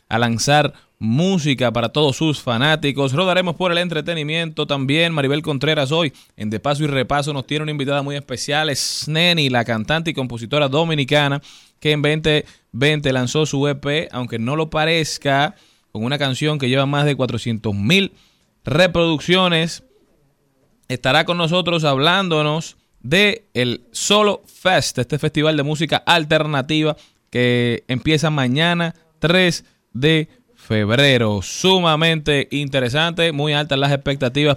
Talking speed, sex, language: 130 wpm, male, Spanish